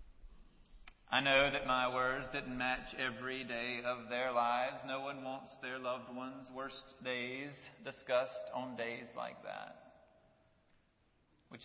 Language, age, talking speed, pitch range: English, 40-59, 135 wpm, 120-150 Hz